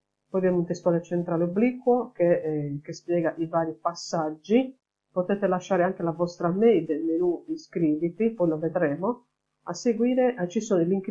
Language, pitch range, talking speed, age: Italian, 170-205 Hz, 175 wpm, 50-69